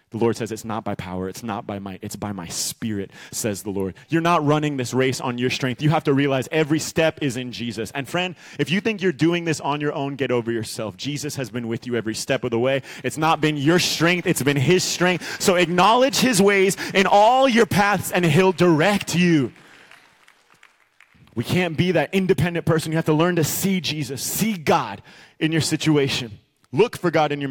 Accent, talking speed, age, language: American, 225 wpm, 30-49, English